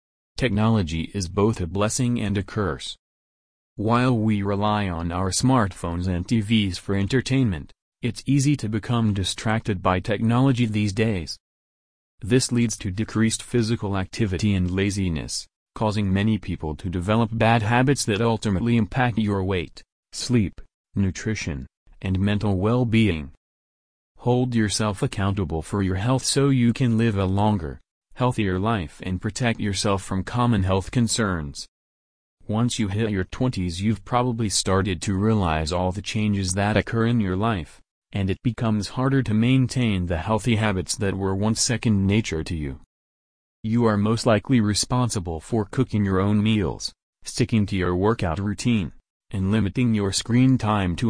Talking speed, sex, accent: 150 wpm, male, American